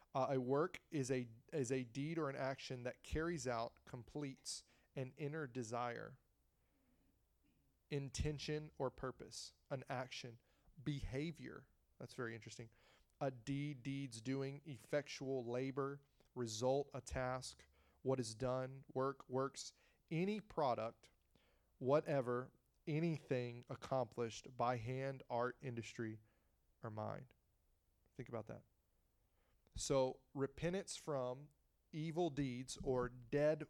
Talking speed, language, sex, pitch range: 110 wpm, English, male, 125-150 Hz